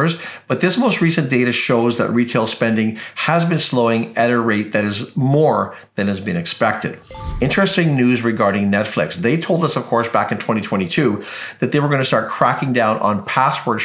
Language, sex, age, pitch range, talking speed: English, male, 50-69, 115-155 Hz, 185 wpm